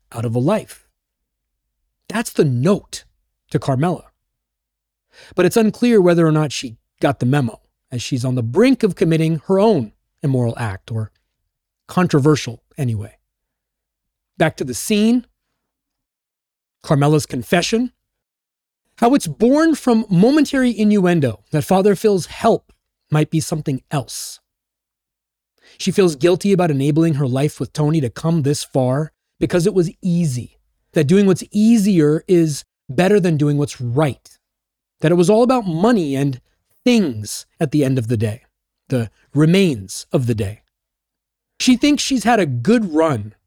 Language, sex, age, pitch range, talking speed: English, male, 30-49, 120-190 Hz, 145 wpm